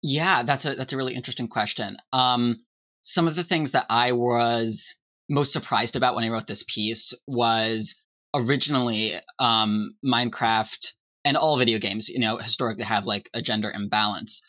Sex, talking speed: male, 165 wpm